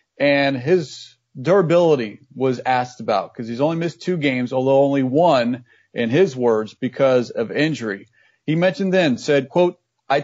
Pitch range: 125-165 Hz